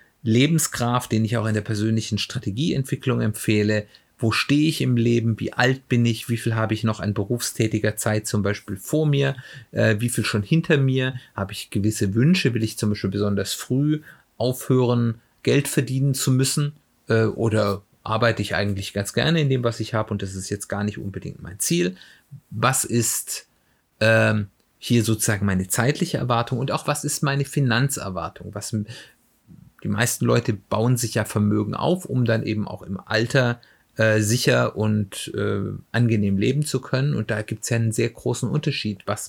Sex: male